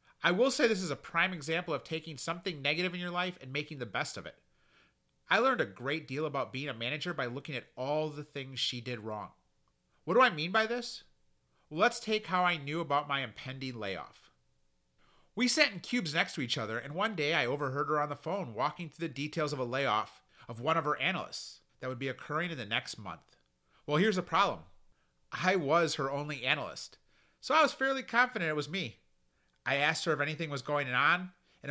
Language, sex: English, male